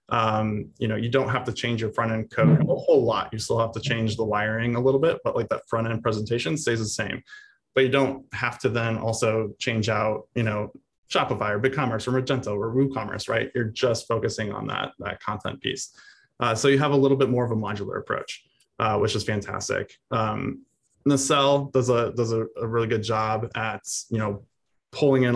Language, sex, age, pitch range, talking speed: English, male, 20-39, 110-125 Hz, 220 wpm